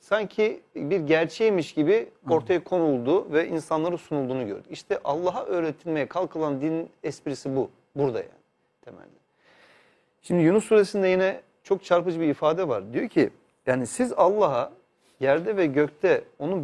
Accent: native